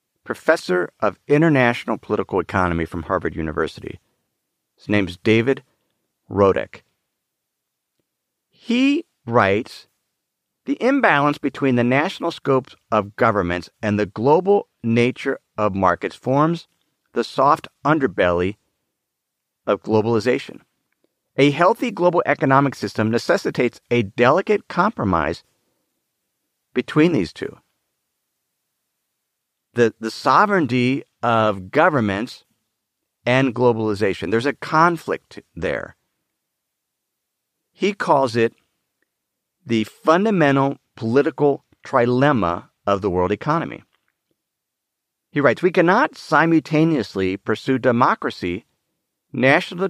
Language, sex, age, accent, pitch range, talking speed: English, male, 50-69, American, 110-160 Hz, 95 wpm